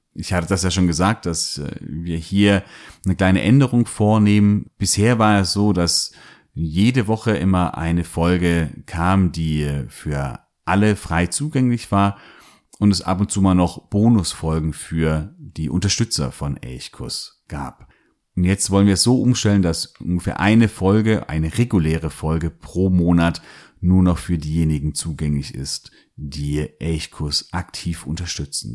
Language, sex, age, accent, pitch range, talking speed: German, male, 30-49, German, 85-105 Hz, 145 wpm